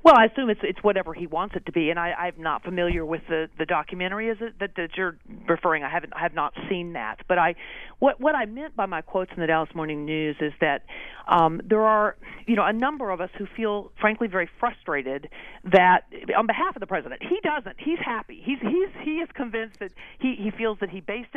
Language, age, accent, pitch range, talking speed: English, 40-59, American, 180-230 Hz, 240 wpm